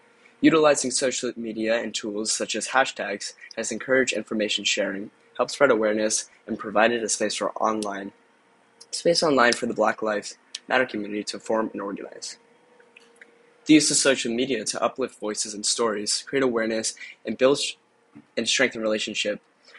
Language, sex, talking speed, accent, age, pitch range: English, male, 150 wpm, American, 10-29, 110-130 Hz